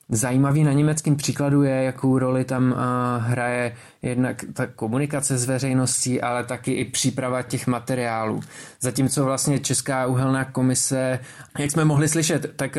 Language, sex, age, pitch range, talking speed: Czech, male, 20-39, 125-145 Hz, 140 wpm